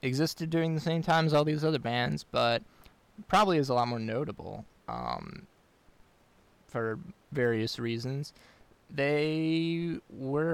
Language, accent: English, American